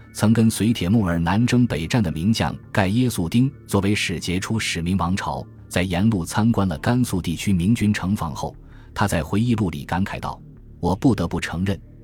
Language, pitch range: Chinese, 85-115 Hz